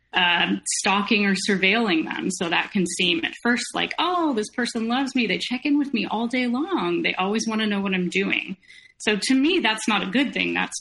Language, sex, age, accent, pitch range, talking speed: English, female, 30-49, American, 185-240 Hz, 235 wpm